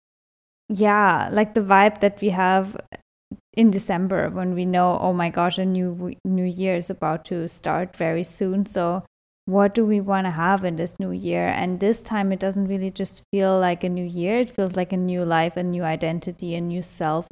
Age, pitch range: 10-29, 190-220 Hz